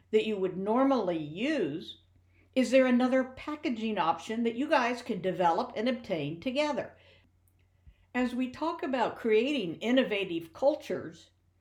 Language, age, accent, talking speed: English, 60-79, American, 130 wpm